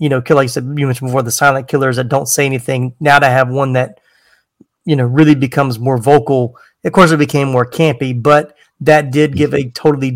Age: 30-49